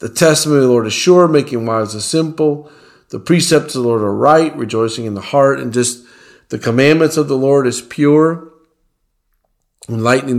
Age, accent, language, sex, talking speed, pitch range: 50-69, American, English, male, 185 wpm, 120-150 Hz